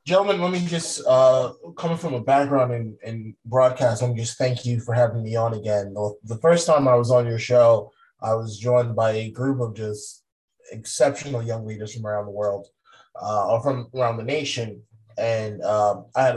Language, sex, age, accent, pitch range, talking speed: English, male, 20-39, American, 110-130 Hz, 195 wpm